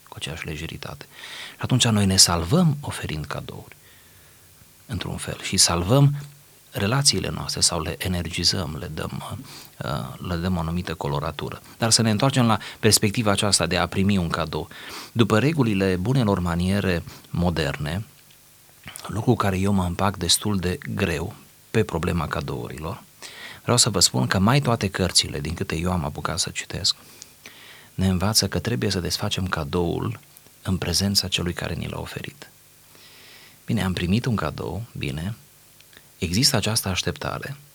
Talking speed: 145 wpm